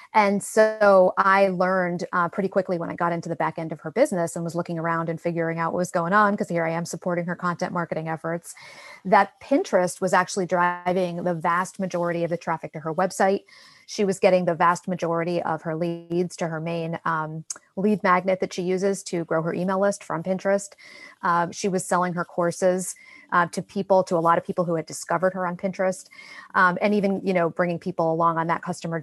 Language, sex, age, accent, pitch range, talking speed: English, female, 30-49, American, 170-195 Hz, 220 wpm